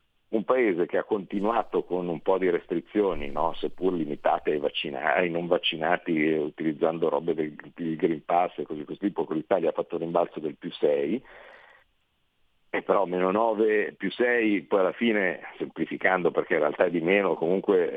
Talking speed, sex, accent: 180 wpm, male, native